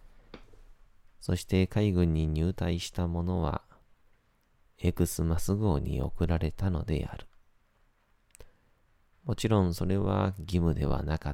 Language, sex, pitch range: Japanese, male, 80-100 Hz